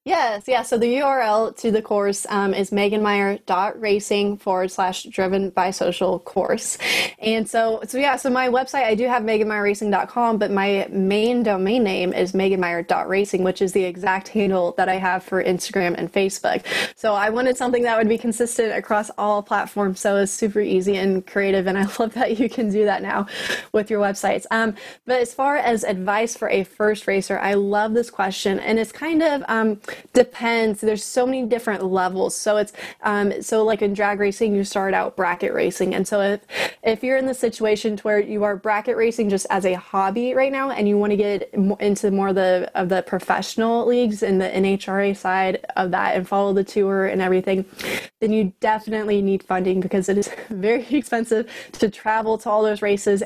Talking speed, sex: 200 wpm, female